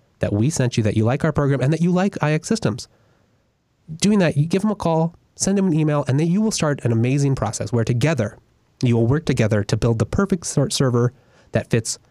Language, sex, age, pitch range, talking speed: English, male, 30-49, 115-170 Hz, 235 wpm